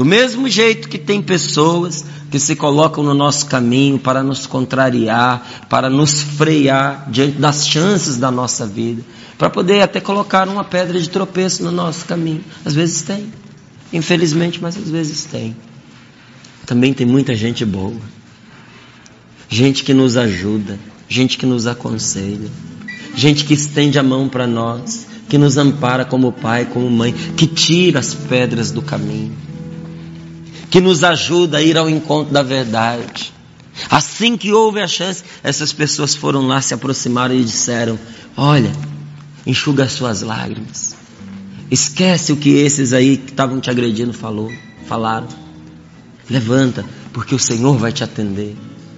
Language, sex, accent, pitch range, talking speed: Portuguese, male, Brazilian, 120-160 Hz, 145 wpm